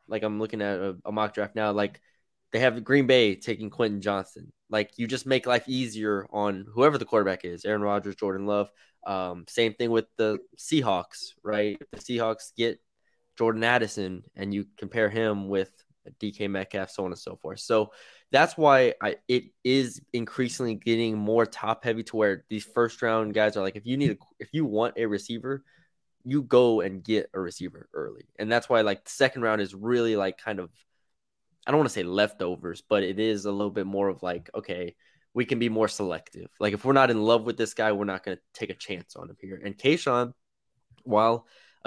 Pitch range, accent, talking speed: 105-125 Hz, American, 210 wpm